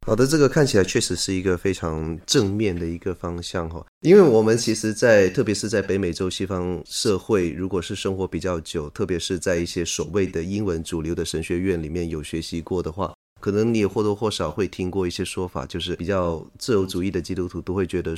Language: Chinese